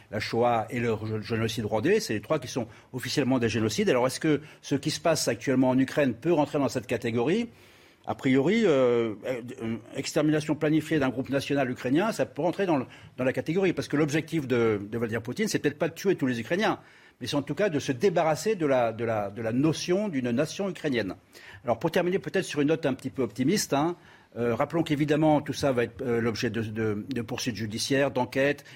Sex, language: male, French